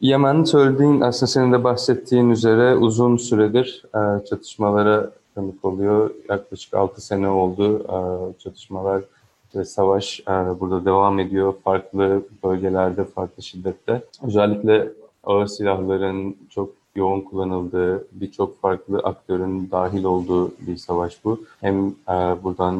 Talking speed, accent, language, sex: 110 wpm, native, Turkish, male